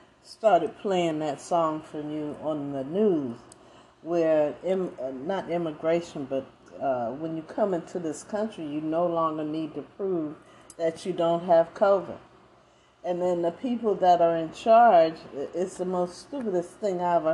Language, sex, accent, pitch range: English, female, American, 160-215 Hz